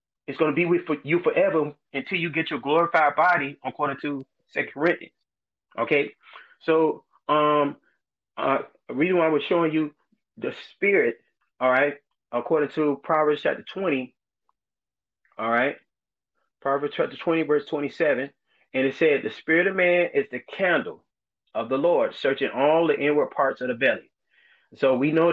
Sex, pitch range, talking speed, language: male, 130-160 Hz, 160 wpm, English